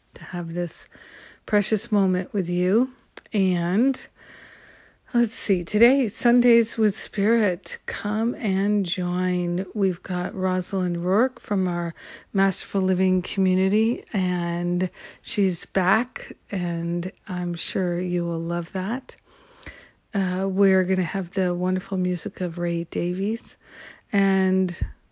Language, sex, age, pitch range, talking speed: English, female, 50-69, 180-210 Hz, 115 wpm